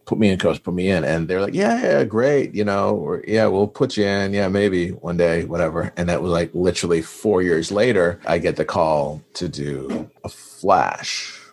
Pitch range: 75-95 Hz